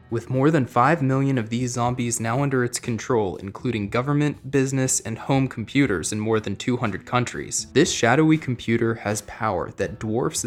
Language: English